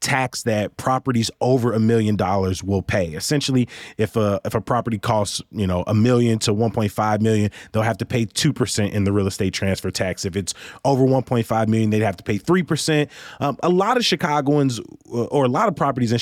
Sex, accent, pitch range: male, American, 110-130 Hz